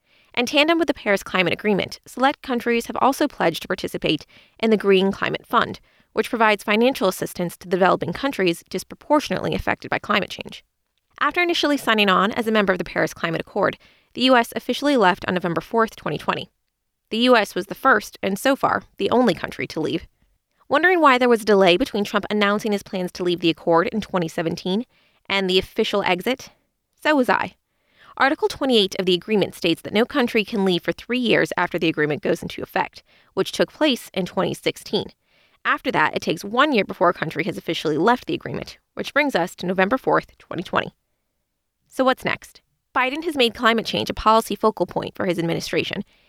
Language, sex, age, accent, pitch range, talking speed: English, female, 20-39, American, 180-245 Hz, 195 wpm